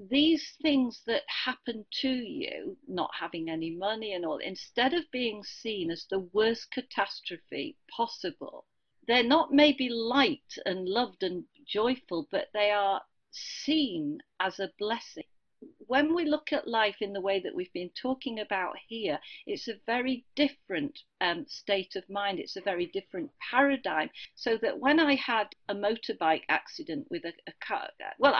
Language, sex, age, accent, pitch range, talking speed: English, female, 40-59, British, 195-275 Hz, 160 wpm